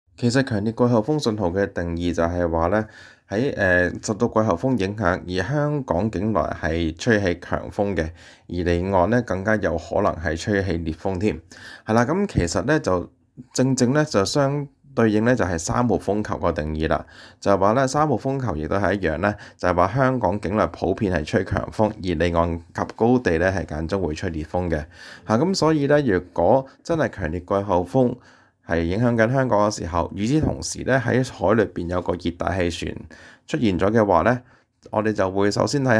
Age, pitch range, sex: 20-39, 85-120 Hz, male